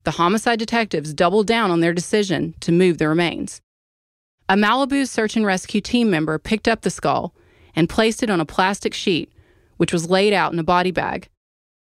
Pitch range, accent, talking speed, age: 155-215 Hz, American, 195 wpm, 30-49